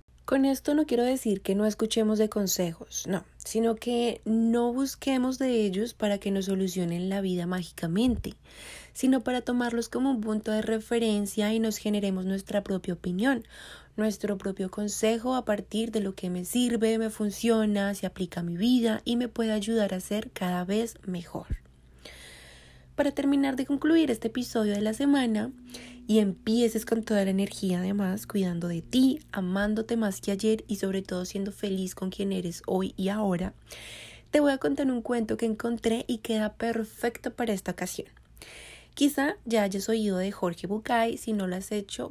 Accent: Colombian